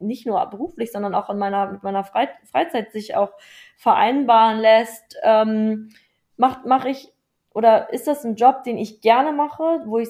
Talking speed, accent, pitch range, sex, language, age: 170 wpm, German, 215-250 Hz, female, German, 20-39